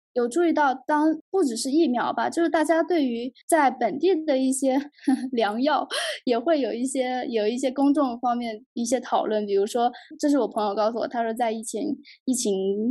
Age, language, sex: 10-29, Chinese, female